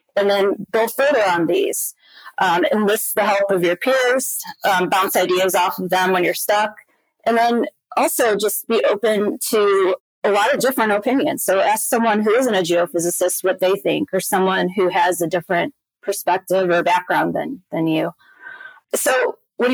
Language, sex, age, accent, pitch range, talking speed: English, female, 30-49, American, 180-245 Hz, 175 wpm